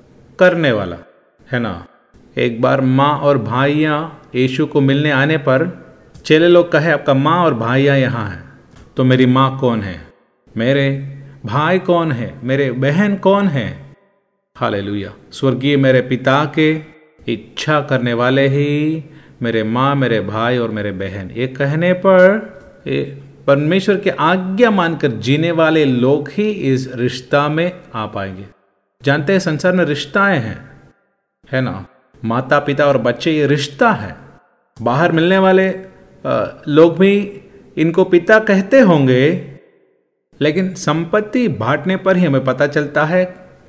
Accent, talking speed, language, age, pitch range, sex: native, 140 wpm, Malayalam, 30-49, 125-170 Hz, male